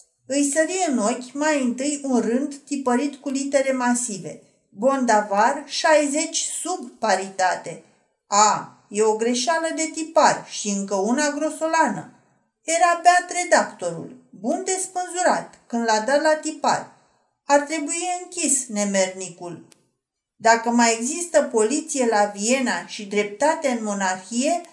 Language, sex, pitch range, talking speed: Romanian, female, 215-300 Hz, 120 wpm